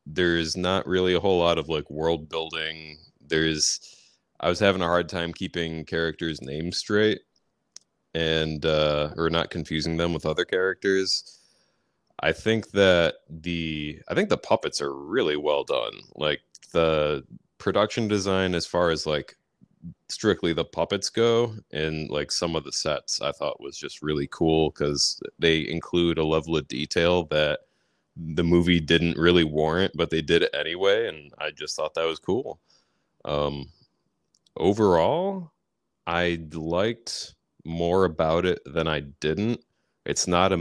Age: 20-39